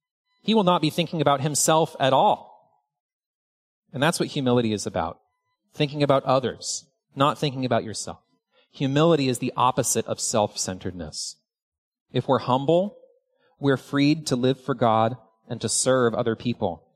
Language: English